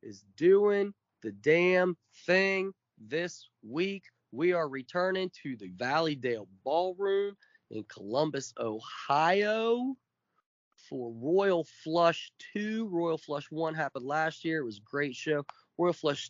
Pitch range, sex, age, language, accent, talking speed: 130-165 Hz, male, 20-39, English, American, 125 wpm